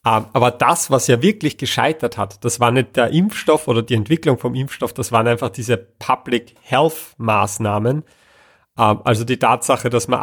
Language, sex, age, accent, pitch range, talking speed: German, male, 30-49, German, 115-140 Hz, 170 wpm